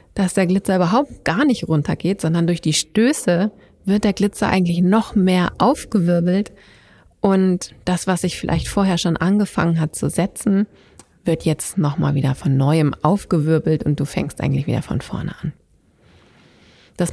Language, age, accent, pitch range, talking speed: German, 30-49, German, 140-205 Hz, 160 wpm